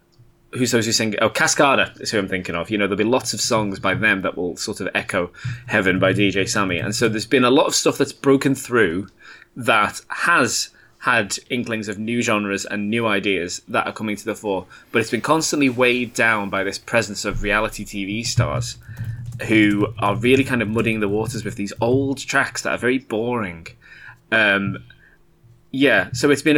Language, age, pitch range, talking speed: English, 20-39, 105-125 Hz, 205 wpm